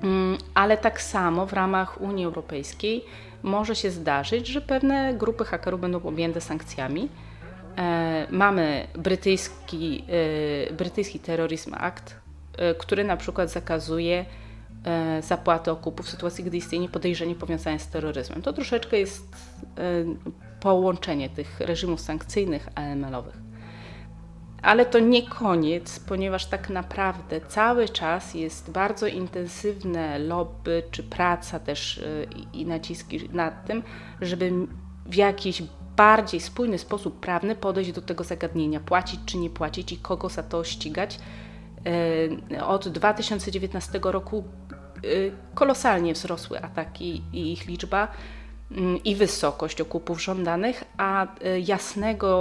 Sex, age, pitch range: female, 30-49, 160-195 Hz